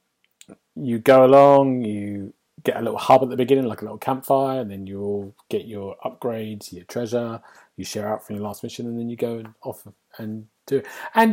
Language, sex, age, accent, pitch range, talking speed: English, male, 30-49, British, 105-135 Hz, 205 wpm